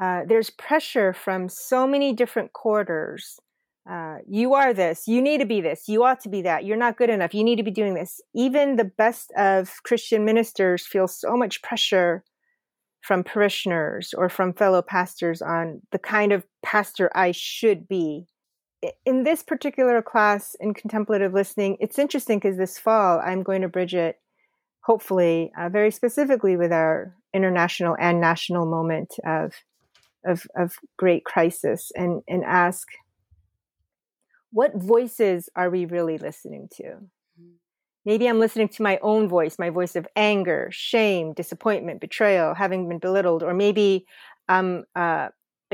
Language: English